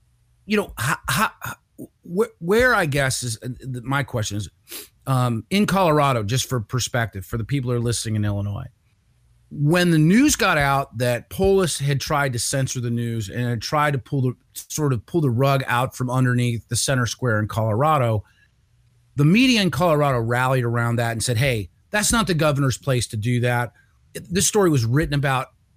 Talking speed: 190 wpm